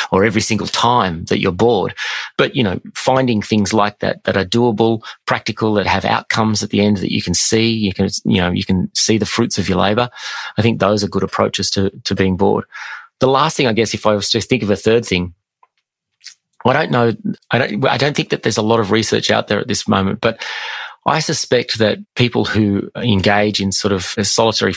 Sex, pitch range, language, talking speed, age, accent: male, 95-115 Hz, English, 230 wpm, 30-49, Australian